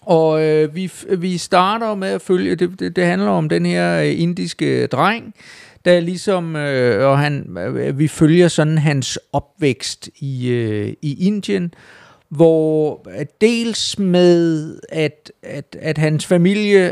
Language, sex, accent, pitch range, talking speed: Danish, male, native, 115-160 Hz, 145 wpm